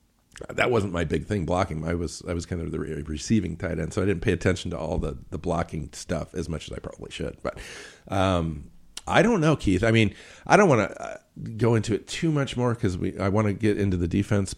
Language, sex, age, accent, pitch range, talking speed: English, male, 50-69, American, 85-110 Hz, 245 wpm